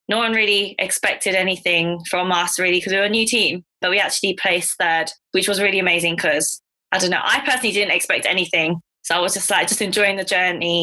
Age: 20-39